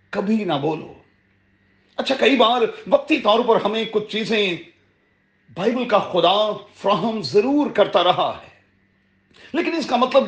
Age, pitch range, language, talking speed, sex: 40-59, 175-240 Hz, Urdu, 140 wpm, male